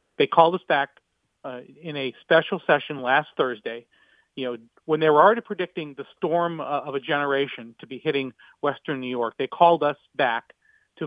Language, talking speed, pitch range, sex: English, 190 wpm, 135-170 Hz, male